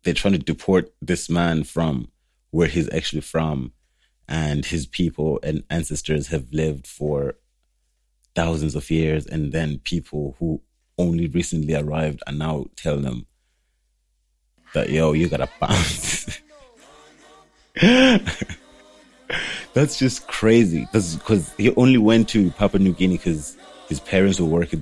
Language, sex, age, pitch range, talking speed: English, male, 30-49, 70-85 Hz, 130 wpm